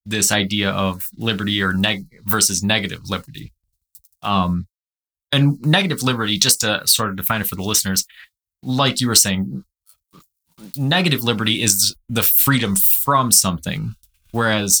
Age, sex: 20-39, male